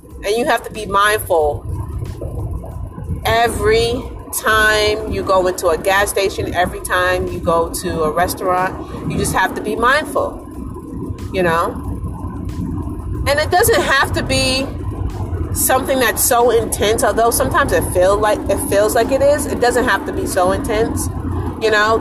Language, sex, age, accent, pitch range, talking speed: English, female, 30-49, American, 185-290 Hz, 160 wpm